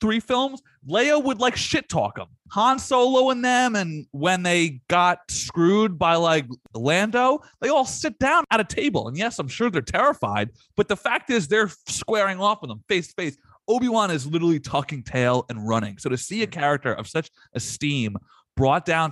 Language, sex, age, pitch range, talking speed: English, male, 30-49, 125-180 Hz, 195 wpm